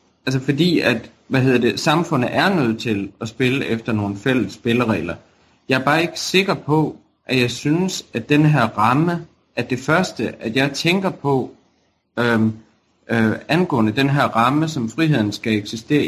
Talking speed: 170 wpm